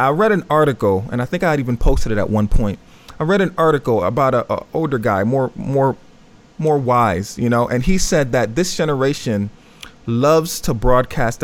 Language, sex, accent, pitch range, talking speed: English, male, American, 120-160 Hz, 205 wpm